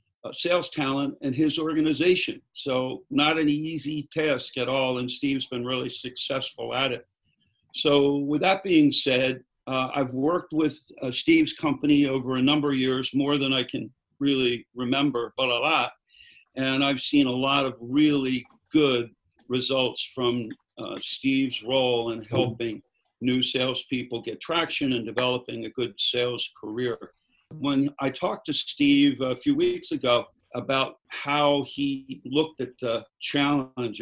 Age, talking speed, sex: 50-69, 155 wpm, male